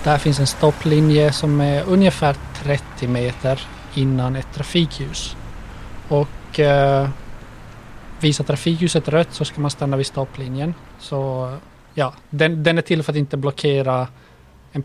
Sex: male